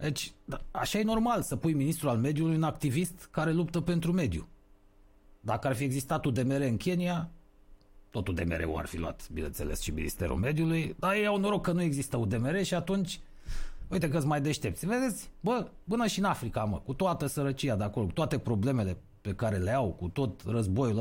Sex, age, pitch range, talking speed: male, 30-49, 90-150 Hz, 195 wpm